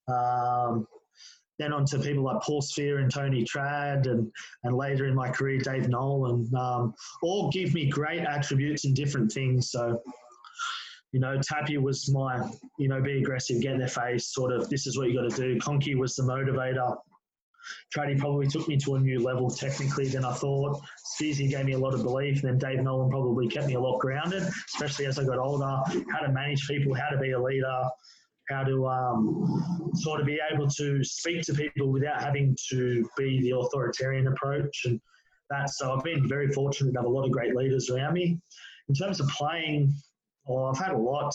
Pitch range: 130-145 Hz